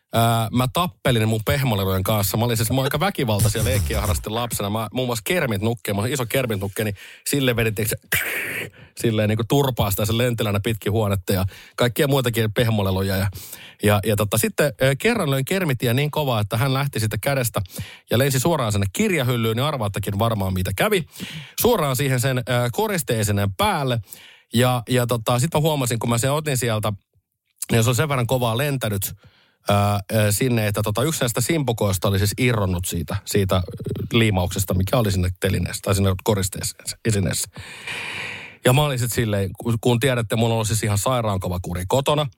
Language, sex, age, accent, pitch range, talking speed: Finnish, male, 30-49, native, 105-130 Hz, 165 wpm